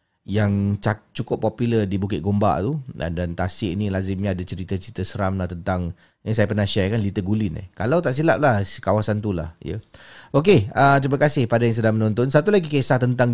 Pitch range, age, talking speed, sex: 100-125 Hz, 30-49, 205 wpm, male